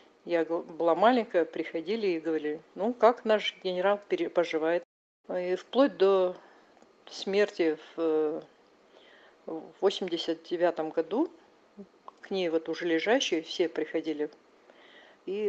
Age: 50-69